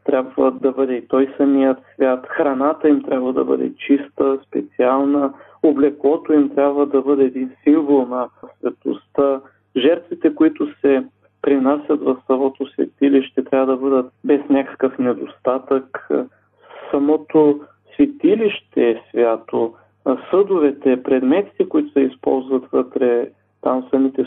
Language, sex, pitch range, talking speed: Bulgarian, male, 130-150 Hz, 120 wpm